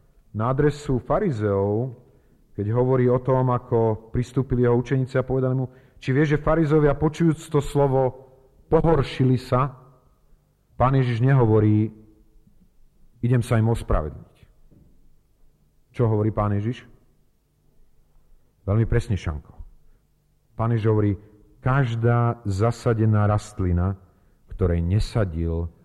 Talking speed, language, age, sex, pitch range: 105 wpm, Slovak, 40-59, male, 90-125 Hz